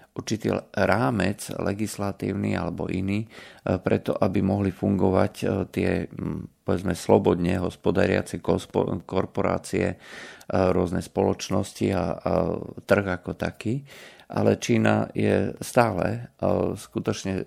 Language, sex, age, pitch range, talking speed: Slovak, male, 40-59, 90-100 Hz, 90 wpm